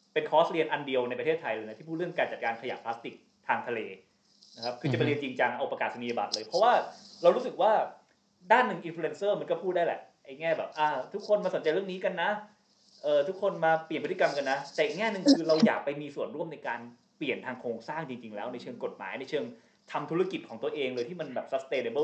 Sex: male